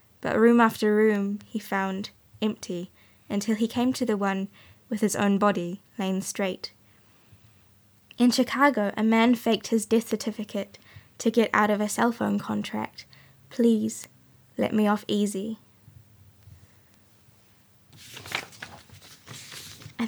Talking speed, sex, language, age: 125 wpm, female, English, 10-29